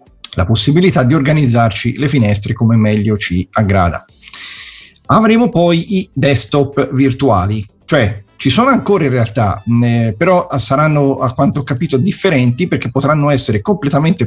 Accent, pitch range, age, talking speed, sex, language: native, 110-155 Hz, 40-59, 140 wpm, male, Italian